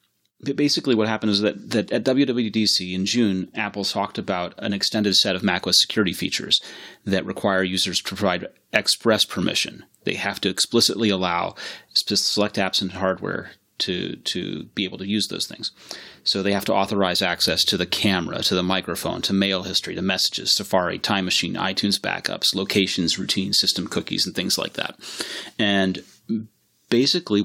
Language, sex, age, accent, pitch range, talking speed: English, male, 30-49, American, 95-110 Hz, 170 wpm